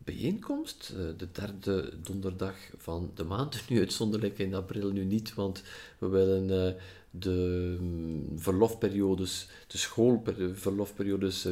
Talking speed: 105 wpm